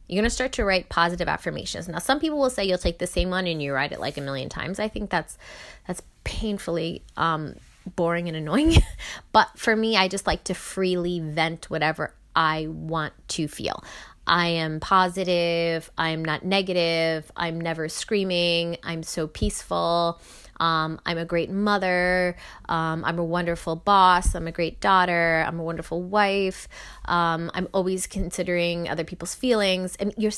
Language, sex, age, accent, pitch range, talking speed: English, female, 20-39, American, 165-200 Hz, 175 wpm